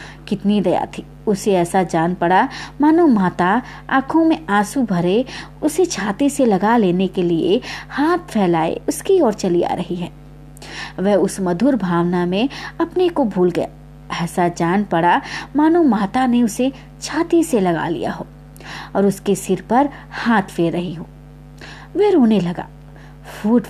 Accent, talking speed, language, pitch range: native, 170 wpm, Hindi, 180-270 Hz